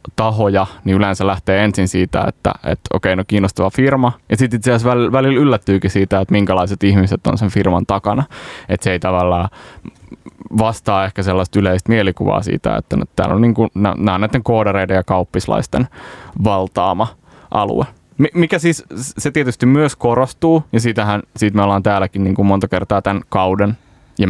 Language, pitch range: Finnish, 95-115 Hz